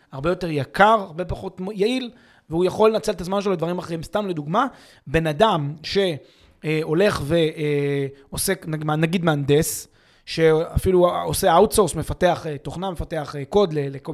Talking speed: 125 wpm